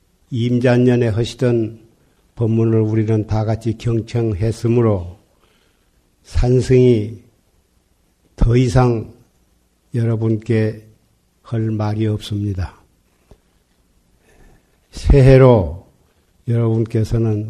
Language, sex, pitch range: Korean, male, 90-115 Hz